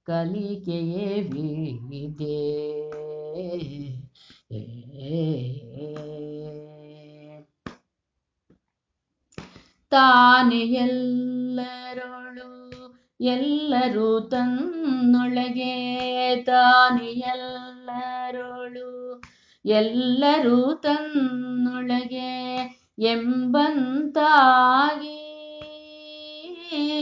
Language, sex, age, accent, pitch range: Kannada, female, 20-39, native, 165-250 Hz